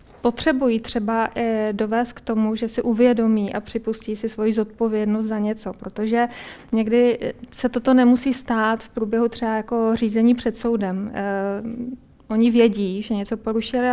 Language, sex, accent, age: Czech, female, native, 20-39